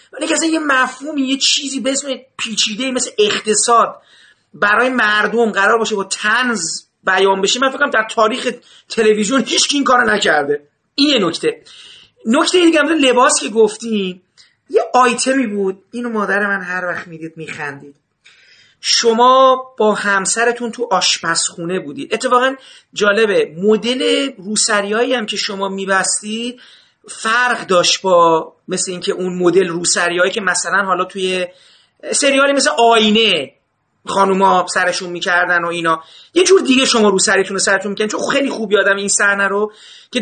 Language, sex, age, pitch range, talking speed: Persian, male, 40-59, 195-255 Hz, 145 wpm